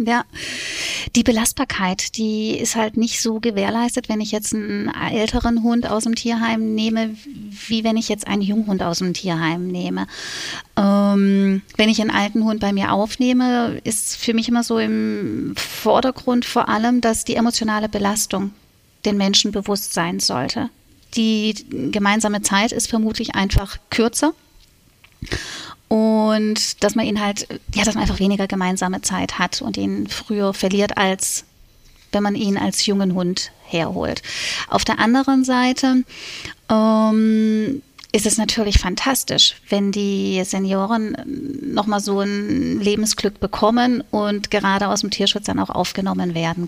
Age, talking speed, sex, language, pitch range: 30-49, 150 wpm, female, German, 200-235 Hz